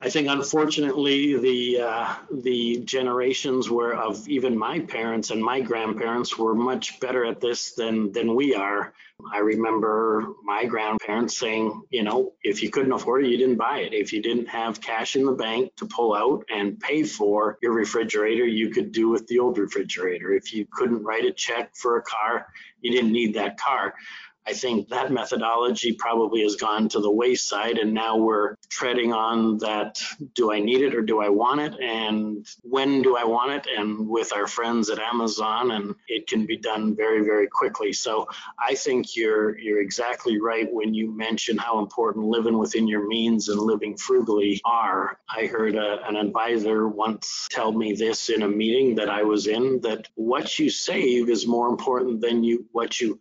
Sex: male